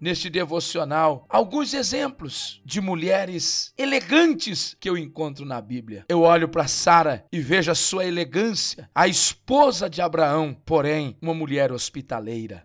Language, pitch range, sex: Portuguese, 155-245 Hz, male